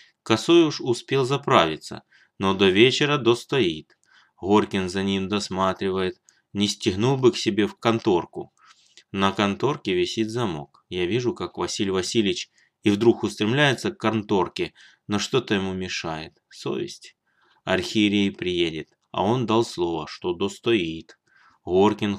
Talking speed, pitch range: 125 wpm, 95-115 Hz